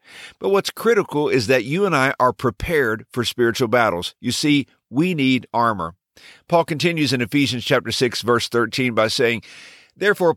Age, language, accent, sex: 50-69, English, American, male